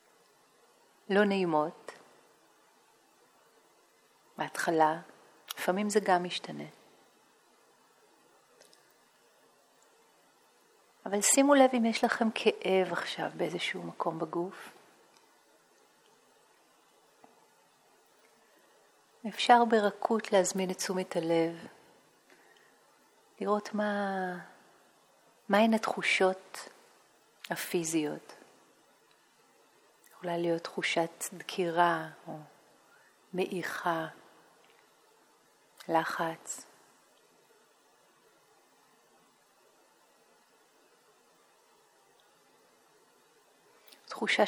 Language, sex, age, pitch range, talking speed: Hebrew, female, 40-59, 170-215 Hz, 50 wpm